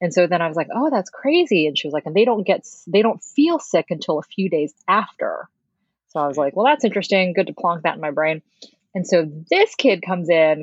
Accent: American